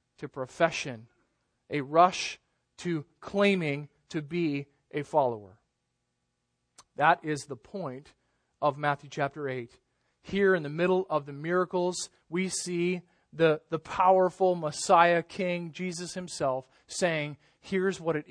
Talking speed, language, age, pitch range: 125 wpm, English, 40-59, 135-180 Hz